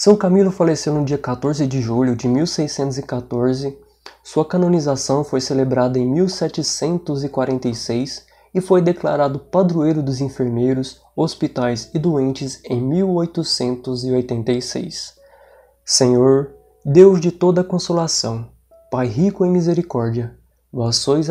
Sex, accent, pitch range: male, Brazilian, 125-165 Hz